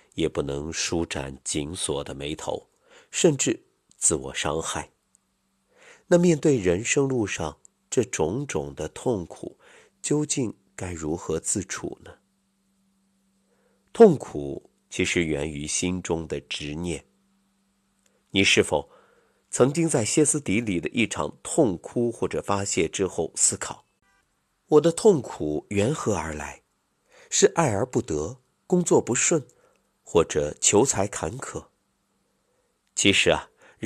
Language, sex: Chinese, male